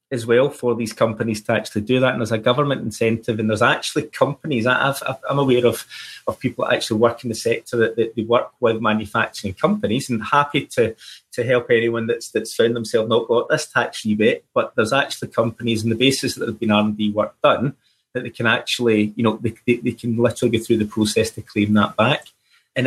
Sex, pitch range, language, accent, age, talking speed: male, 110-135 Hz, English, British, 30-49, 230 wpm